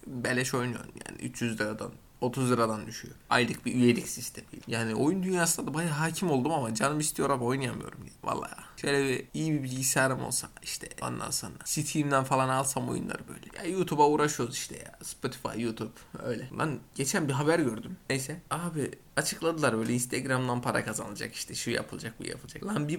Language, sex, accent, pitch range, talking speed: Turkish, male, native, 125-155 Hz, 175 wpm